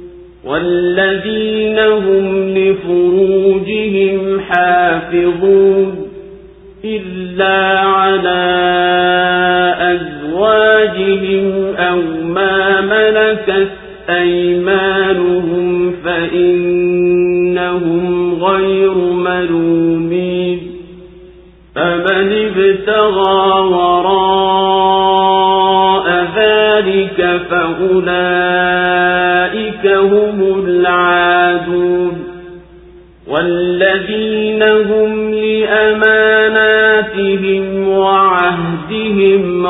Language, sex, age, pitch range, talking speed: Swahili, male, 50-69, 180-195 Hz, 35 wpm